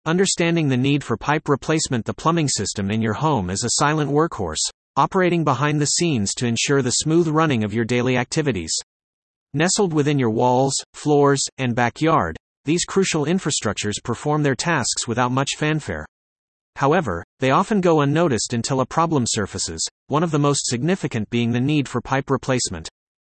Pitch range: 120-155 Hz